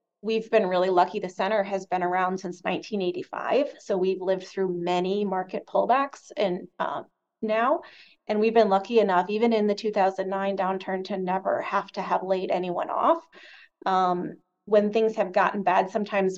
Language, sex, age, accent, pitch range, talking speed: English, female, 30-49, American, 185-215 Hz, 165 wpm